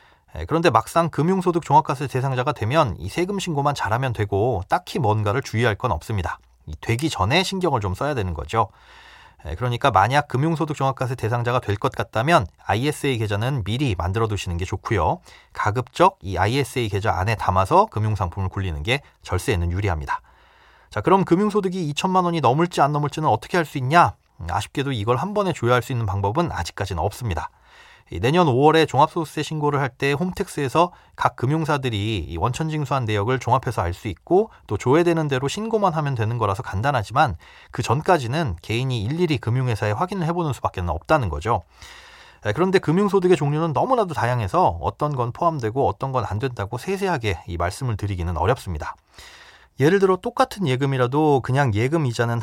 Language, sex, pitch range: Korean, male, 105-160 Hz